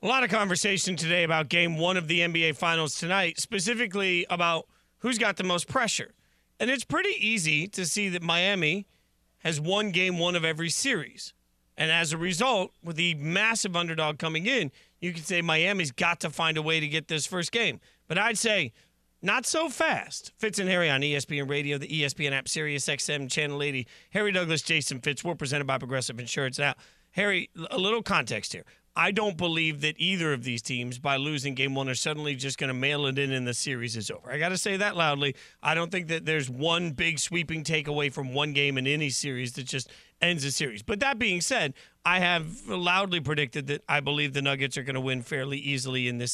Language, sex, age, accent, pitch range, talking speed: English, male, 40-59, American, 145-185 Hz, 215 wpm